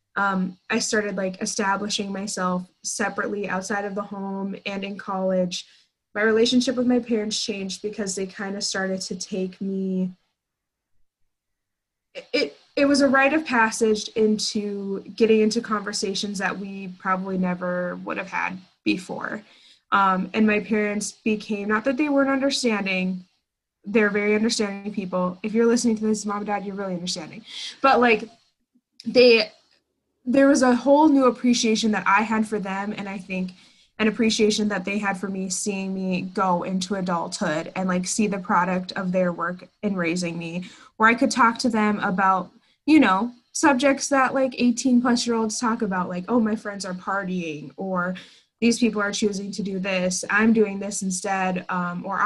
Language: English